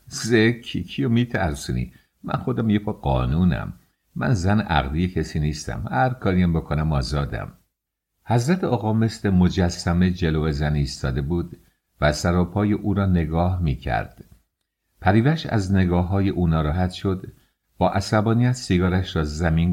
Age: 50-69